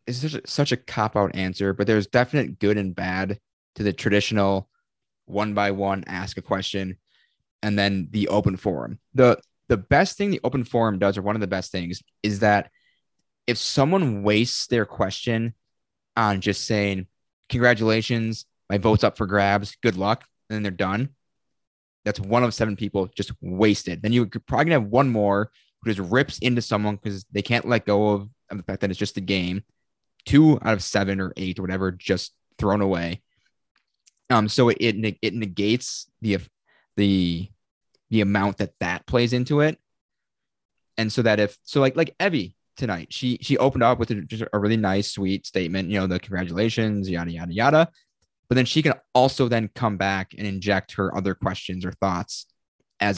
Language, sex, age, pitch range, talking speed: English, male, 20-39, 95-115 Hz, 185 wpm